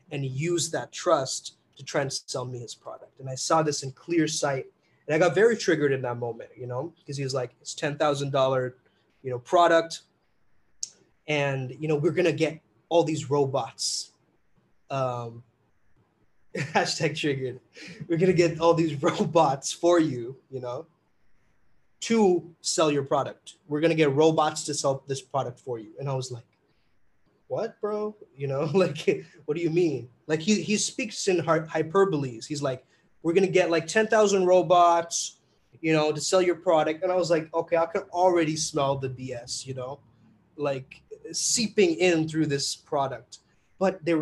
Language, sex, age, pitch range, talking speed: English, male, 20-39, 135-170 Hz, 180 wpm